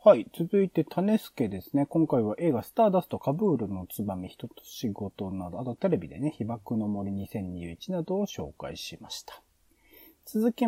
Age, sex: 30-49, male